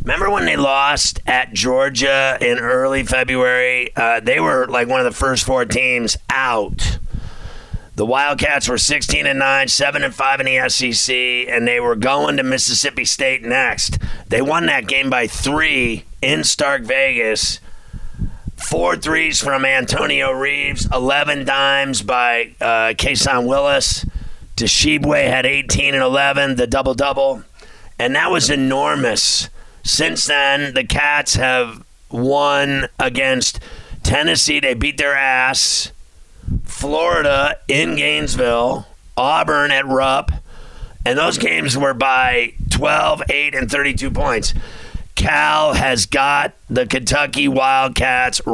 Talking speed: 130 wpm